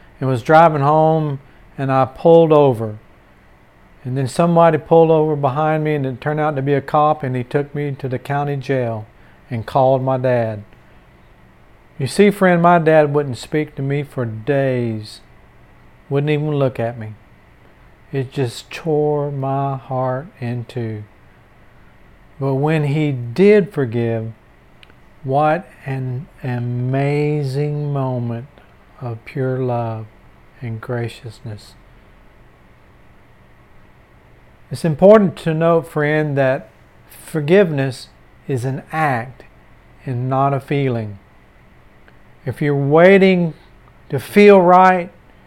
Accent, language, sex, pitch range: American, English, male, 125-155 Hz